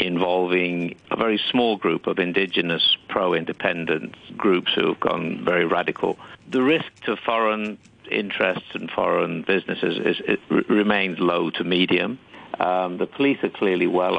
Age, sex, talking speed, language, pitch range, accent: 50-69, male, 150 wpm, English, 100-150 Hz, British